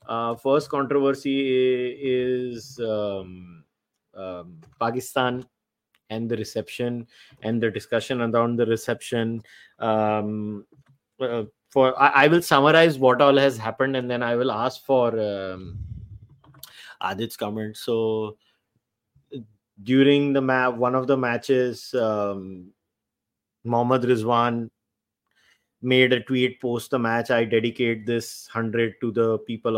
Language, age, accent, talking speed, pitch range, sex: English, 30-49, Indian, 125 wpm, 115-130 Hz, male